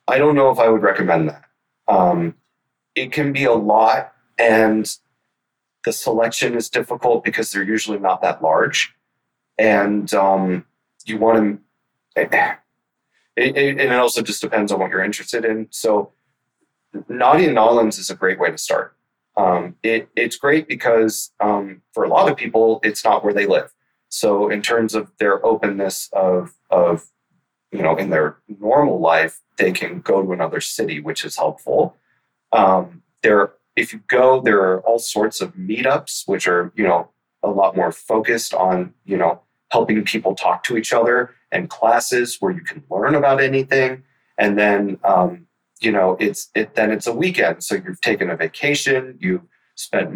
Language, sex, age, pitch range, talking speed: English, male, 30-49, 95-120 Hz, 175 wpm